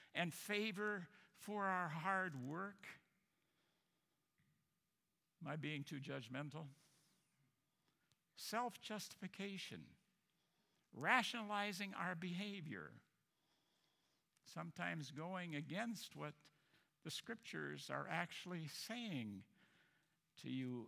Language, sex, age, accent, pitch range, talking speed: English, male, 60-79, American, 155-215 Hz, 80 wpm